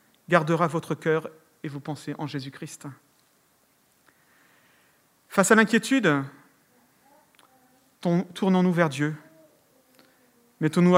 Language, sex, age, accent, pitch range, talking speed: French, male, 40-59, French, 160-210 Hz, 80 wpm